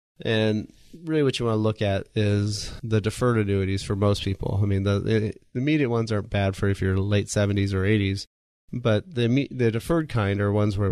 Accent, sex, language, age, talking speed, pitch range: American, male, English, 30-49, 210 wpm, 95-115 Hz